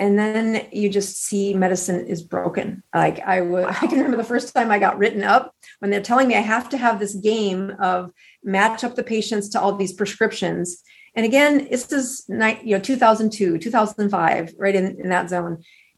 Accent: American